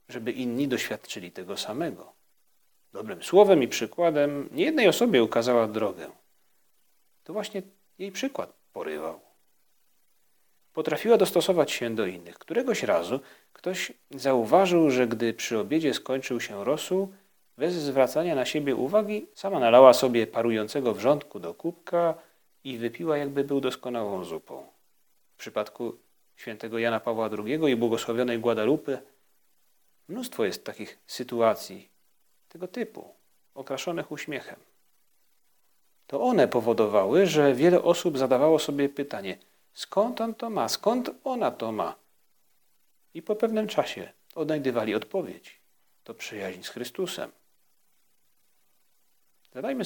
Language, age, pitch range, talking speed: Polish, 40-59, 125-185 Hz, 120 wpm